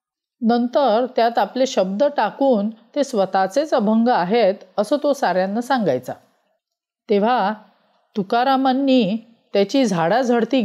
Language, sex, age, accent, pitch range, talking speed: Marathi, female, 40-59, native, 210-275 Hz, 95 wpm